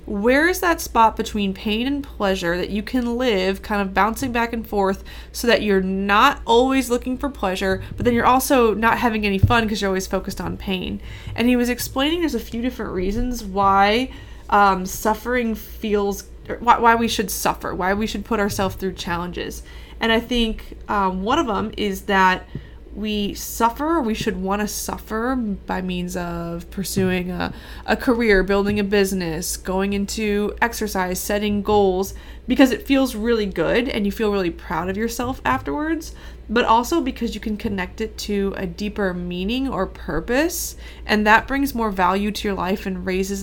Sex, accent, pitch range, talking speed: female, American, 190-235 Hz, 180 wpm